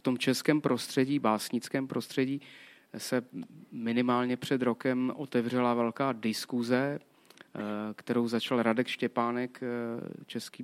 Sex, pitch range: male, 120-130 Hz